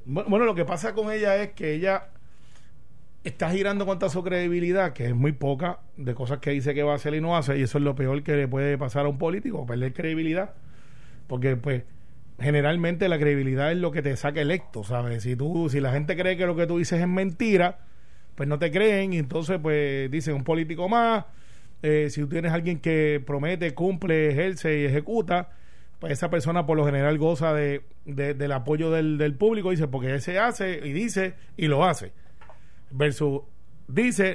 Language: Spanish